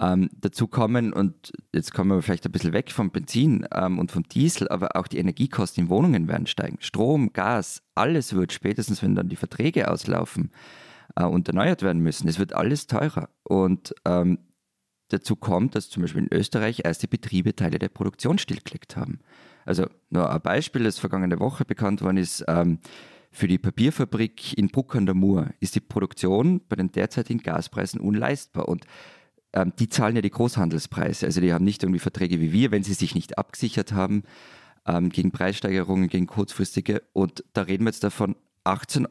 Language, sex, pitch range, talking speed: German, male, 90-115 Hz, 185 wpm